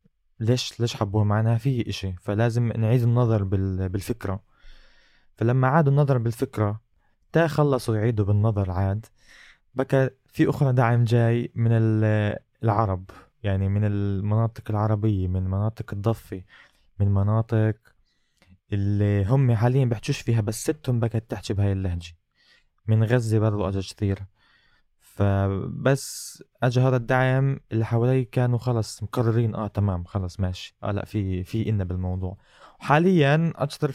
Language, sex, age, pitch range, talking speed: Arabic, male, 20-39, 100-120 Hz, 125 wpm